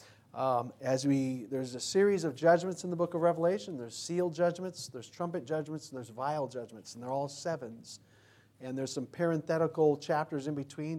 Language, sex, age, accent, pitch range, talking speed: English, male, 40-59, American, 125-155 Hz, 185 wpm